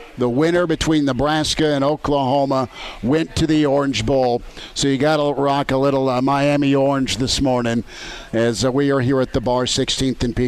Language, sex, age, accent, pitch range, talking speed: English, male, 50-69, American, 130-150 Hz, 195 wpm